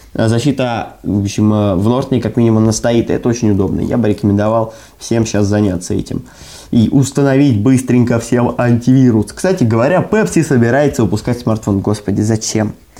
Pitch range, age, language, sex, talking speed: 110-140 Hz, 20-39, Russian, male, 145 wpm